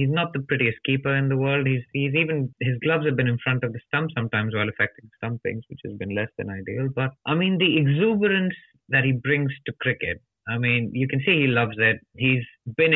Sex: male